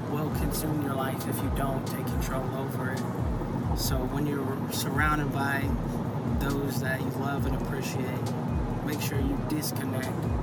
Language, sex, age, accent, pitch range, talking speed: English, male, 20-39, American, 130-140 Hz, 150 wpm